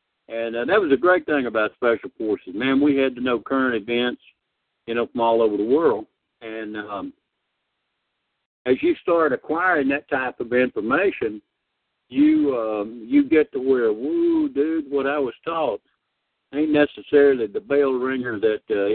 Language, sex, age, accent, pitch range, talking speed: English, male, 60-79, American, 125-190 Hz, 170 wpm